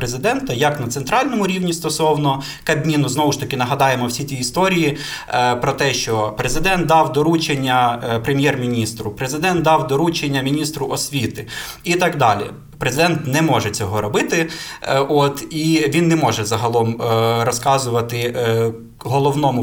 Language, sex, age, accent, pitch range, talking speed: Ukrainian, male, 20-39, native, 125-155 Hz, 130 wpm